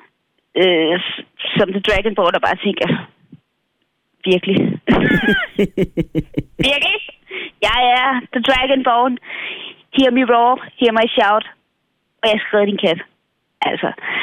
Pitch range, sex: 200-245 Hz, female